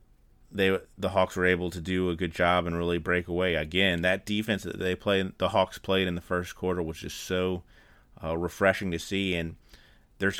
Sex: male